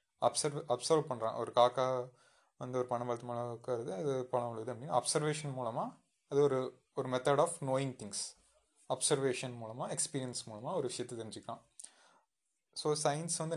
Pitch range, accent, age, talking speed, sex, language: 120-145 Hz, native, 20-39, 140 wpm, male, Tamil